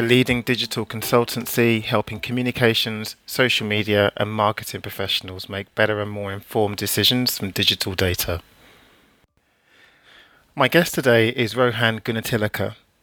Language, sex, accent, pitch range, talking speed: English, male, British, 105-125 Hz, 120 wpm